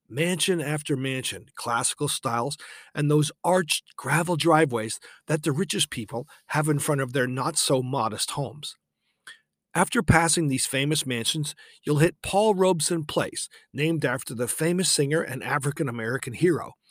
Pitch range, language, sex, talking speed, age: 130-170 Hz, English, male, 140 wpm, 40-59